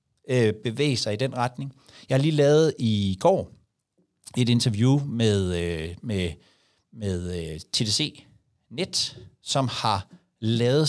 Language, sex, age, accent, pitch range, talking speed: Danish, male, 60-79, native, 110-145 Hz, 115 wpm